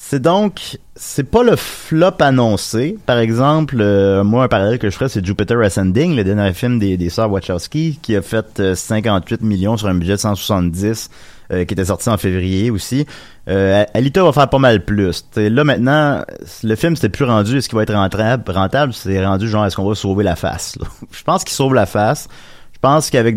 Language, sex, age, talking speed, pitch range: French, male, 30-49, 210 wpm, 100-135 Hz